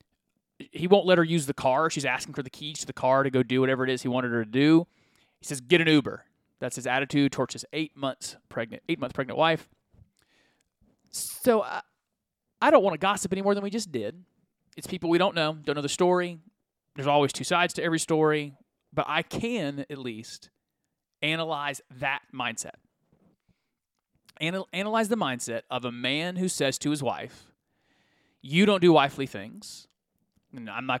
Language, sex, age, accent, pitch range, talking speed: English, male, 30-49, American, 140-190 Hz, 185 wpm